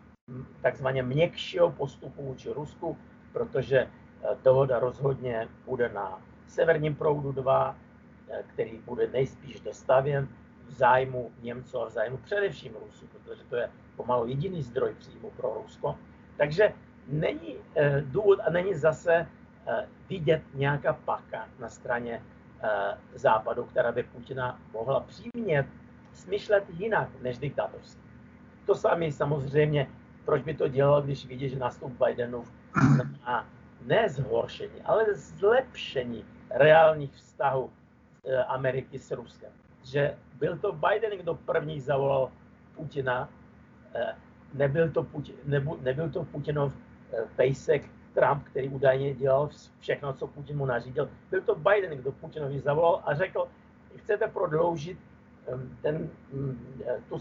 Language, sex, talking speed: Slovak, male, 120 wpm